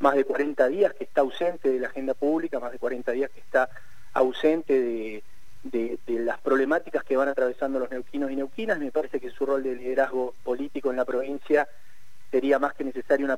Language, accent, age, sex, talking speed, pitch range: Spanish, Argentinian, 40-59, male, 200 wpm, 125-155 Hz